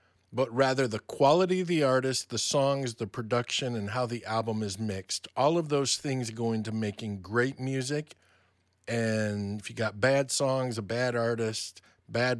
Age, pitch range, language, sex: 50-69, 100-130 Hz, English, male